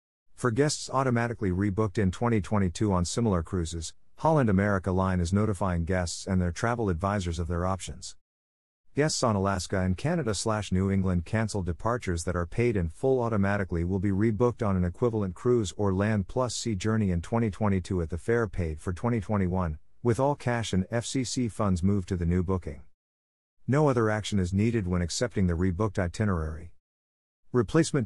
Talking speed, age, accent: 170 wpm, 50-69, American